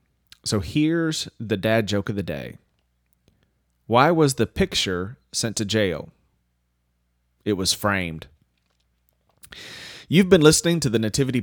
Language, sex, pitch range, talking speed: English, male, 95-120 Hz, 125 wpm